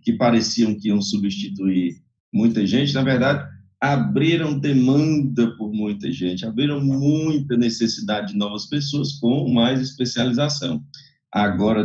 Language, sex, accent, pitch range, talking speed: English, male, Brazilian, 115-145 Hz, 120 wpm